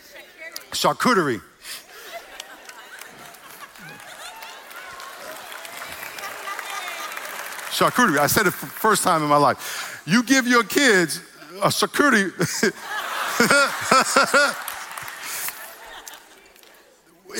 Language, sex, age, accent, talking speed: English, male, 50-69, American, 60 wpm